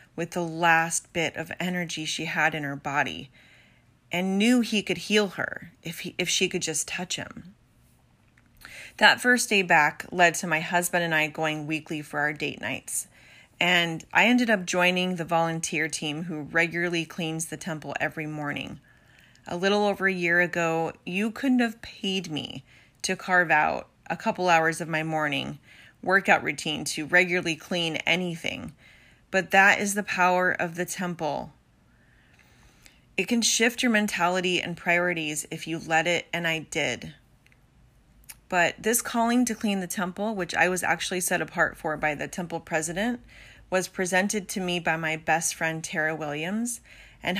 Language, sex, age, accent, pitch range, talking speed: English, female, 30-49, American, 160-190 Hz, 170 wpm